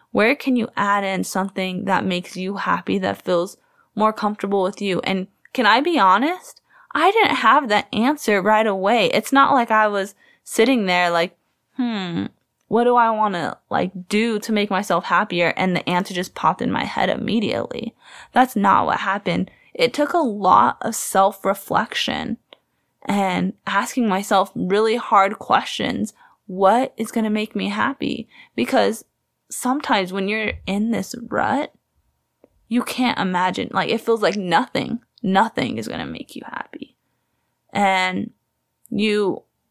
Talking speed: 155 wpm